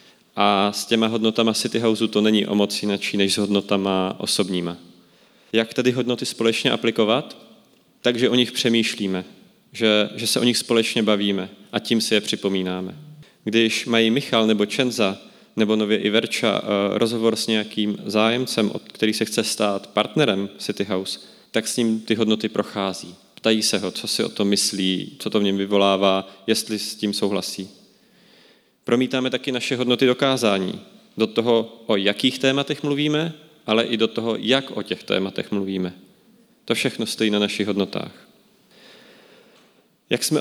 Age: 30-49